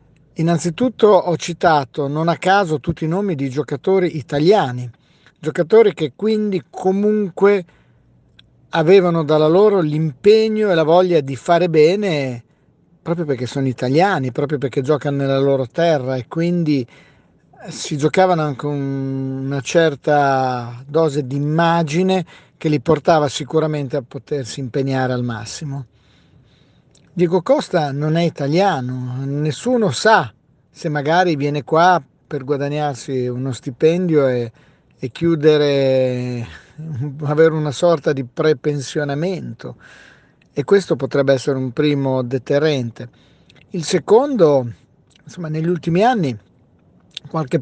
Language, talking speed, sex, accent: Italian, 115 wpm, male, native